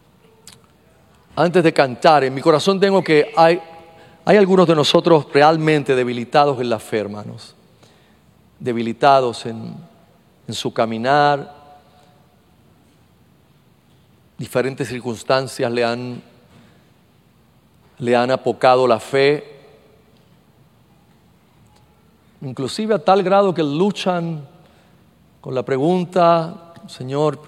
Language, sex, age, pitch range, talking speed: Spanish, male, 40-59, 120-155 Hz, 90 wpm